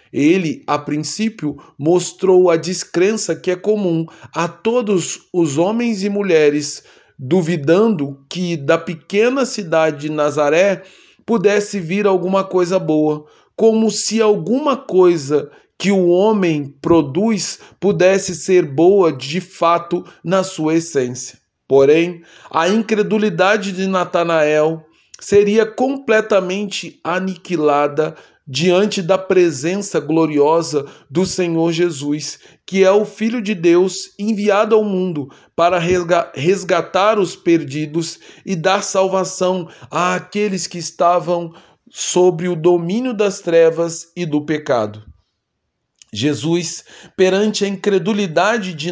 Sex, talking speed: male, 110 wpm